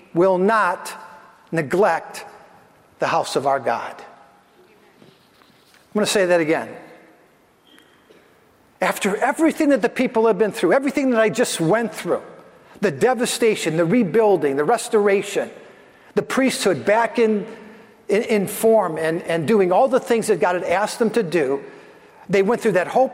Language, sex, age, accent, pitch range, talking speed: English, male, 50-69, American, 175-225 Hz, 150 wpm